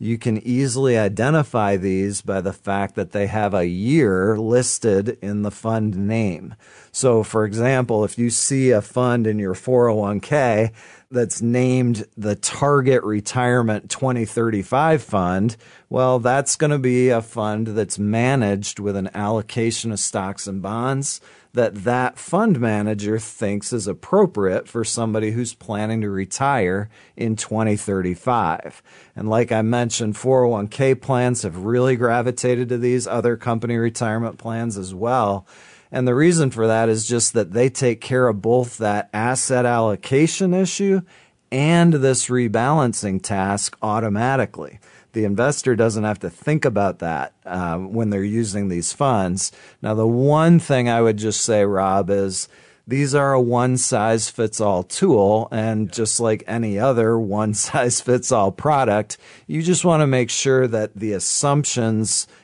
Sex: male